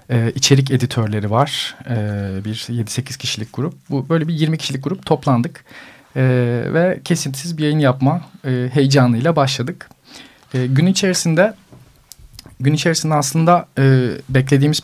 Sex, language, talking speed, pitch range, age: male, Turkish, 110 wpm, 120-140 Hz, 40-59